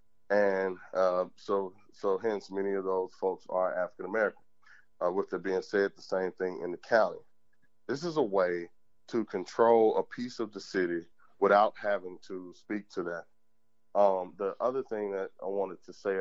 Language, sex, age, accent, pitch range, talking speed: English, male, 30-49, American, 95-115 Hz, 180 wpm